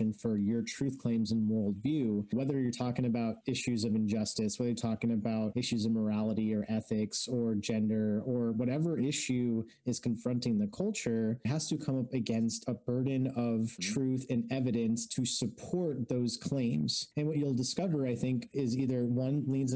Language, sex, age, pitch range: English, male, 30-49, 115-135 Hz